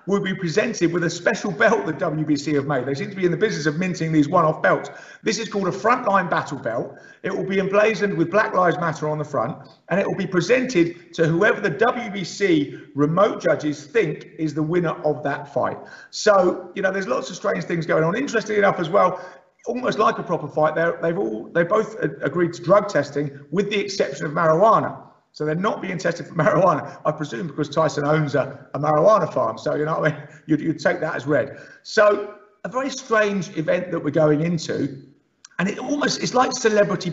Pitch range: 155-205 Hz